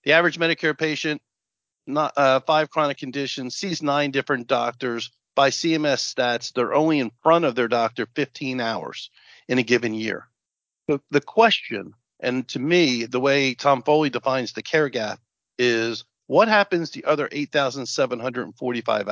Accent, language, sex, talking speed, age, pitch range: American, English, male, 155 wpm, 50-69, 120-150 Hz